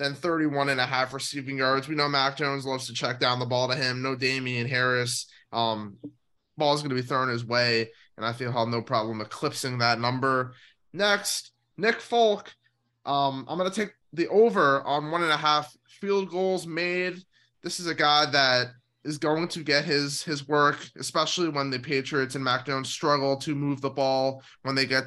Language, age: English, 20-39